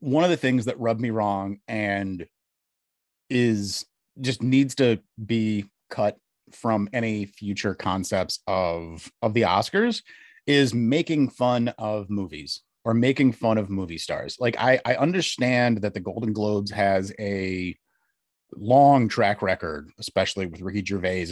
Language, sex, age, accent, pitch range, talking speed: English, male, 30-49, American, 100-130 Hz, 145 wpm